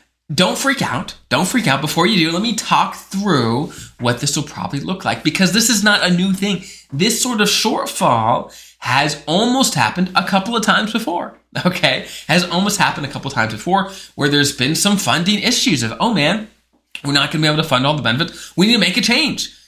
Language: English